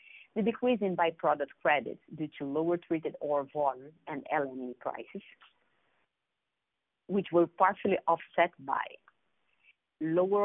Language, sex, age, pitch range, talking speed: English, female, 30-49, 150-200 Hz, 115 wpm